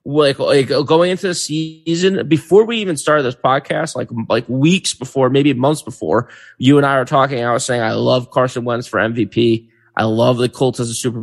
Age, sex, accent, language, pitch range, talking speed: 20-39, male, American, English, 120-145 Hz, 215 wpm